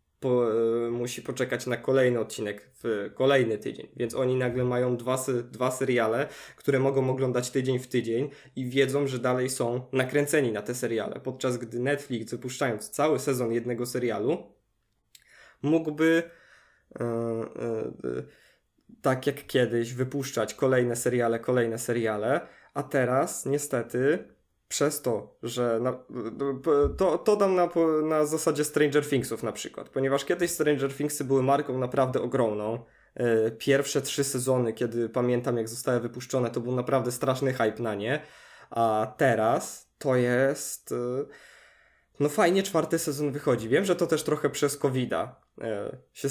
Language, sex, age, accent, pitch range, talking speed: Polish, male, 20-39, native, 120-140 Hz, 135 wpm